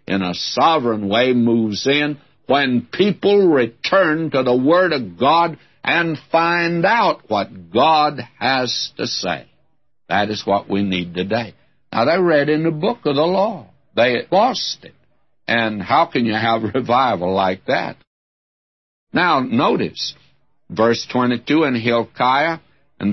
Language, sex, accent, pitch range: English, male, American, 110-145 Hz